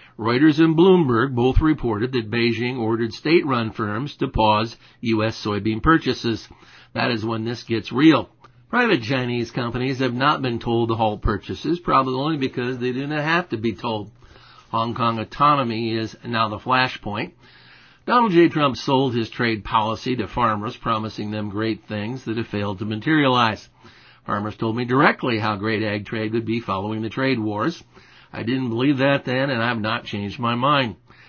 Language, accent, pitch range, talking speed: English, American, 110-130 Hz, 175 wpm